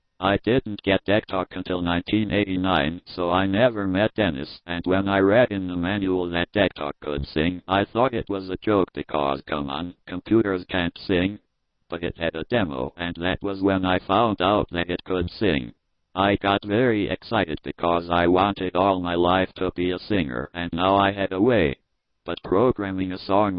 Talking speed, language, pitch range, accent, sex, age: 190 wpm, English, 85-100 Hz, American, male, 50-69